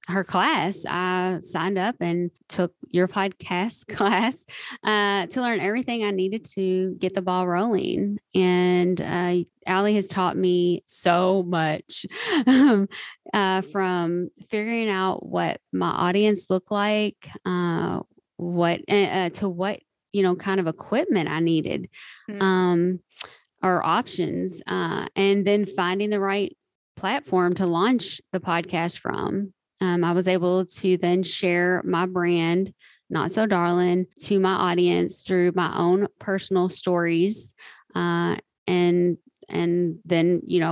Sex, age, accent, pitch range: female, 20-39, American, 175-195 Hz